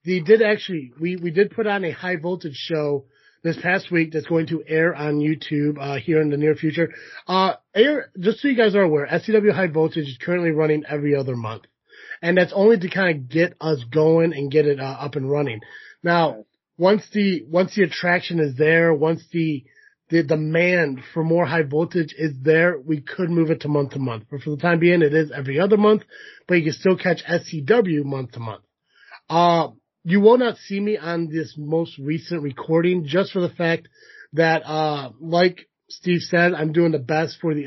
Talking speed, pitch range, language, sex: 210 wpm, 155-185 Hz, English, male